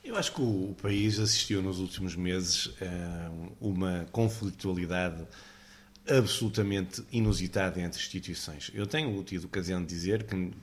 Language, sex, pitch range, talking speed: Portuguese, male, 95-115 Hz, 135 wpm